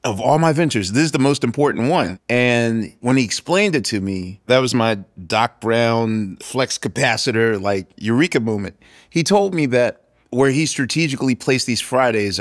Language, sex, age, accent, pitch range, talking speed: English, male, 30-49, American, 95-120 Hz, 180 wpm